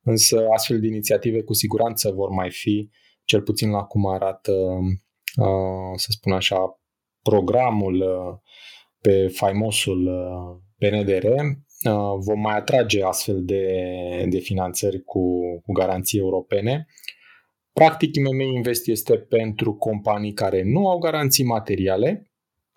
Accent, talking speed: native, 115 wpm